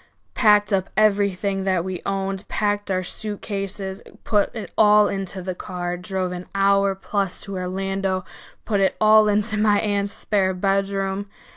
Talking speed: 150 wpm